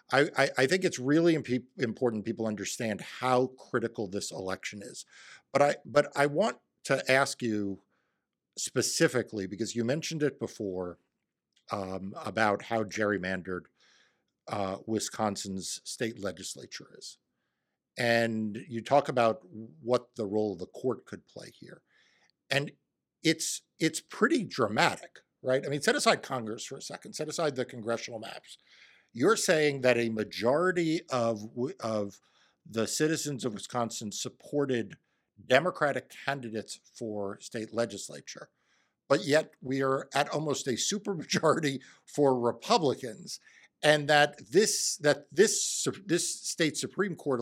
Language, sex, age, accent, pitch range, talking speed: English, male, 50-69, American, 110-145 Hz, 135 wpm